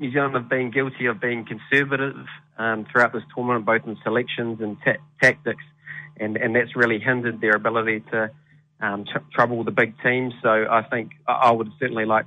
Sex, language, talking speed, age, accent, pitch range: male, English, 195 wpm, 30-49, Australian, 110-120 Hz